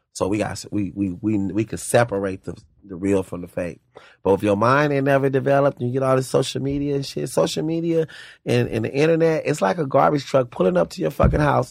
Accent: American